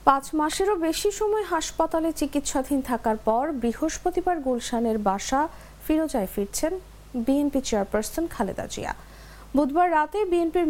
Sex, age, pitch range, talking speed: female, 50-69, 230-320 Hz, 105 wpm